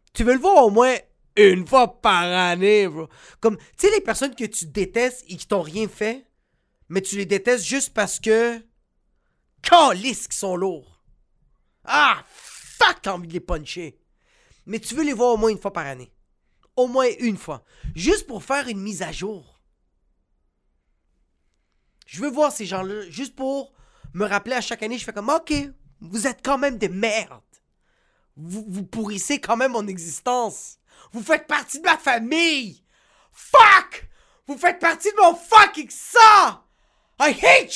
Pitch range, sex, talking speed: 180-265 Hz, male, 175 wpm